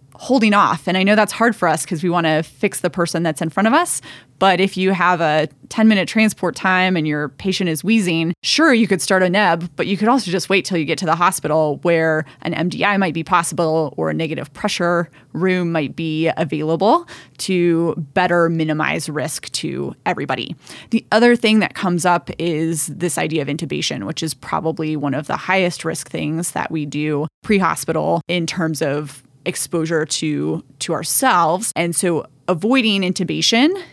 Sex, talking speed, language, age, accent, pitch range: female, 190 wpm, English, 20-39, American, 155-190 Hz